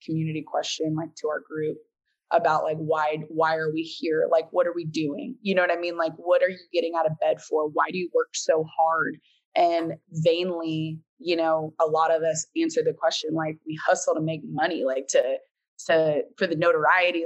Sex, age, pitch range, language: female, 20-39, 160-210 Hz, English